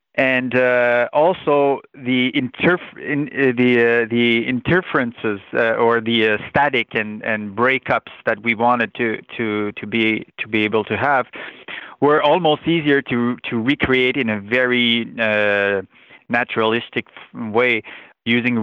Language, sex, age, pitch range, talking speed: English, male, 30-49, 115-130 Hz, 140 wpm